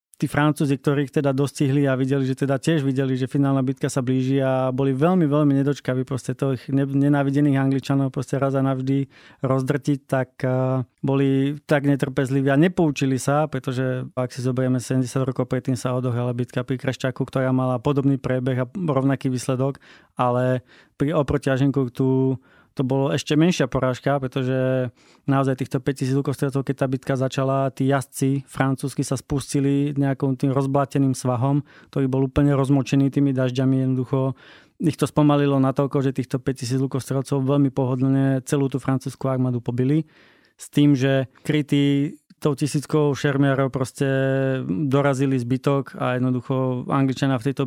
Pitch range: 130-140 Hz